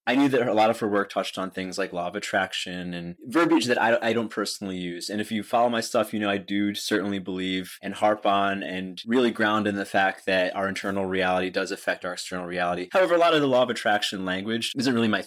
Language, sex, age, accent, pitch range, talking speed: English, male, 20-39, American, 95-115 Hz, 255 wpm